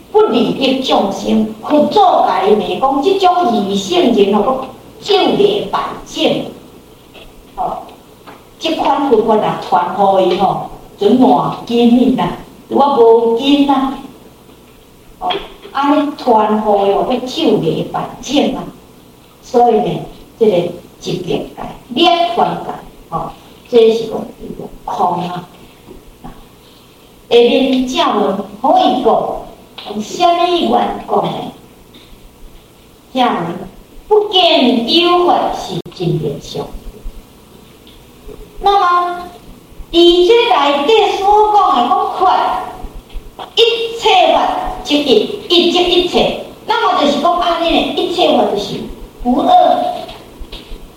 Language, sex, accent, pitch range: Chinese, female, American, 230-355 Hz